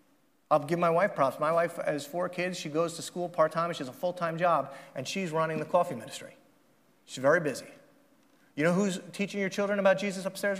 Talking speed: 215 wpm